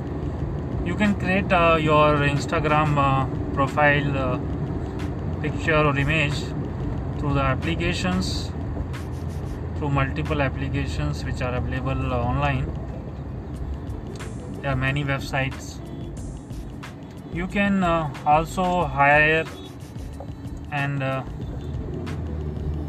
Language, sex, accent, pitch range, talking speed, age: English, male, Indian, 95-155 Hz, 90 wpm, 30-49